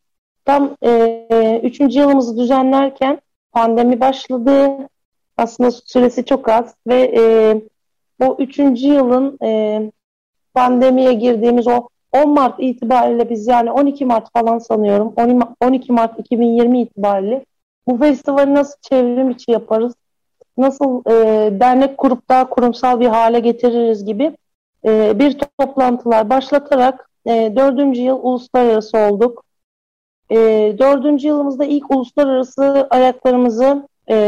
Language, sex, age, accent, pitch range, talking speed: Turkish, female, 40-59, native, 225-260 Hz, 115 wpm